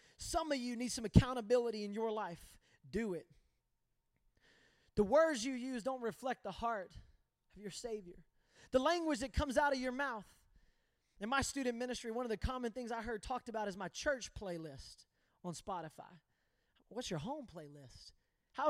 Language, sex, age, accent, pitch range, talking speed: English, male, 20-39, American, 185-285 Hz, 175 wpm